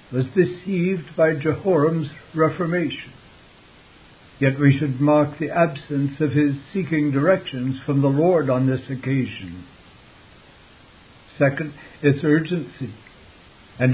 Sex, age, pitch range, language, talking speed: male, 60-79, 135-170 Hz, English, 110 wpm